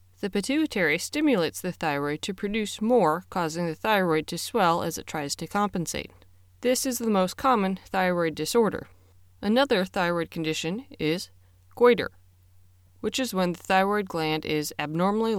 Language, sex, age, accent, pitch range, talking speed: English, female, 20-39, American, 150-210 Hz, 150 wpm